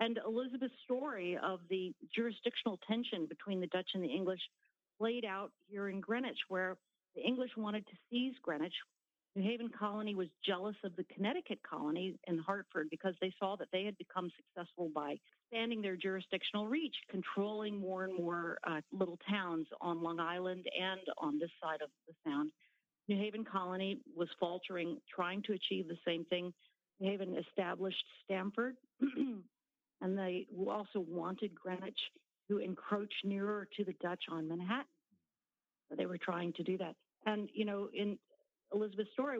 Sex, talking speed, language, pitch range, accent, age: female, 165 wpm, English, 180-225 Hz, American, 50-69